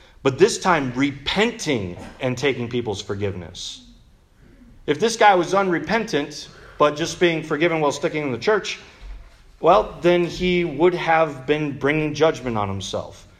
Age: 40-59